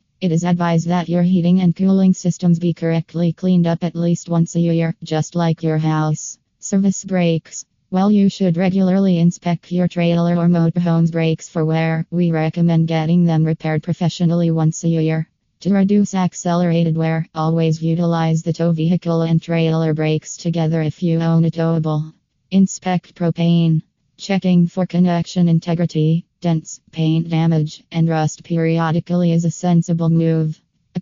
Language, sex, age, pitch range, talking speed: English, female, 20-39, 160-175 Hz, 155 wpm